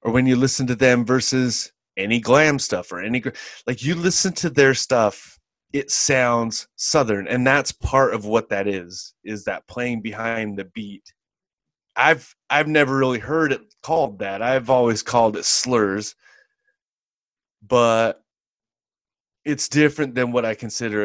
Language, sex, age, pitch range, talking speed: English, male, 30-49, 105-130 Hz, 155 wpm